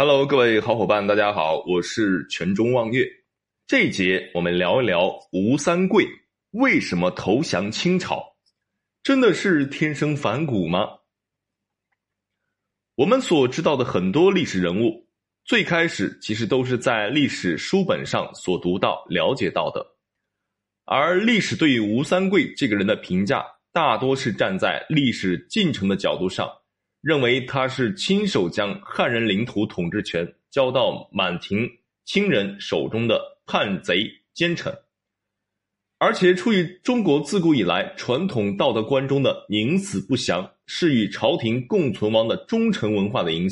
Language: Chinese